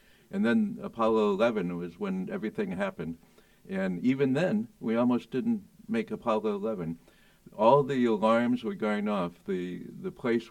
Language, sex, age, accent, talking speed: English, male, 60-79, American, 150 wpm